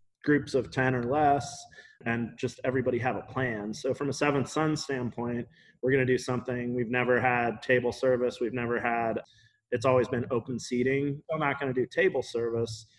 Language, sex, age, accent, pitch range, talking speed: English, male, 30-49, American, 120-130 Hz, 195 wpm